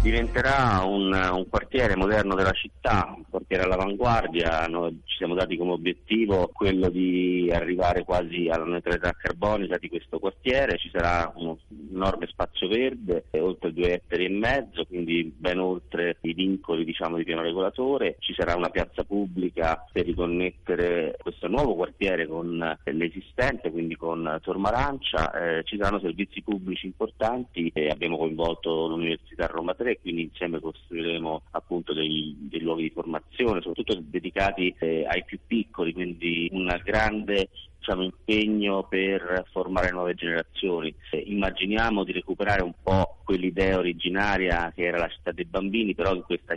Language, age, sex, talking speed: Italian, 30-49, male, 145 wpm